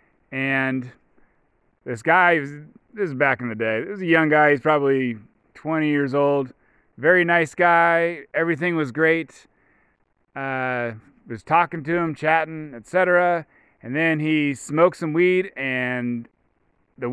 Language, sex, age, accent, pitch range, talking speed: English, male, 30-49, American, 125-160 Hz, 140 wpm